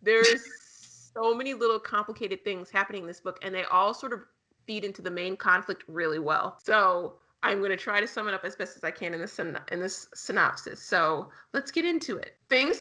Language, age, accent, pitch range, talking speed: English, 30-49, American, 185-230 Hz, 225 wpm